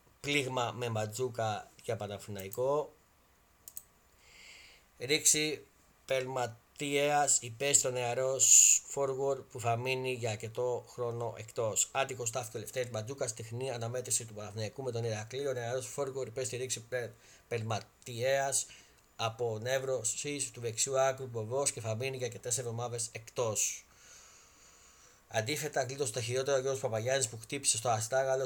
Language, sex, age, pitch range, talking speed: Greek, male, 30-49, 110-130 Hz, 125 wpm